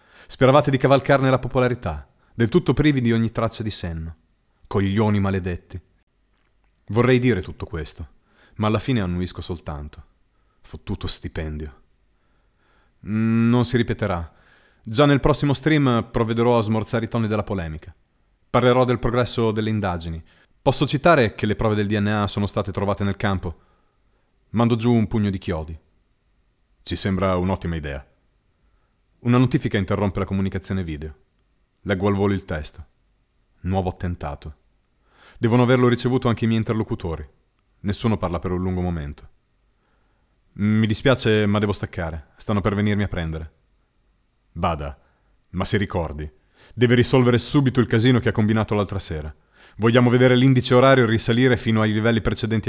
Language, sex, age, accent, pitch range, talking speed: Italian, male, 30-49, native, 90-120 Hz, 145 wpm